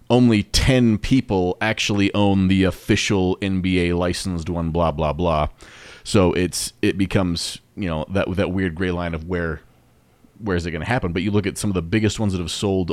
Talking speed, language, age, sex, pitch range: 205 wpm, English, 30-49, male, 90-115 Hz